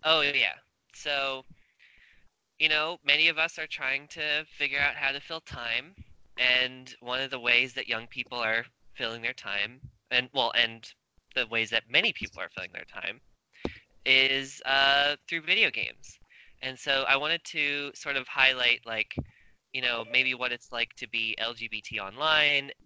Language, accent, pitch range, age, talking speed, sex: English, American, 115-145 Hz, 20-39, 170 wpm, male